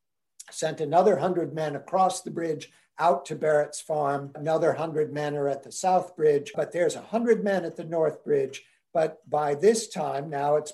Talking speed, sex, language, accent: 190 wpm, male, English, American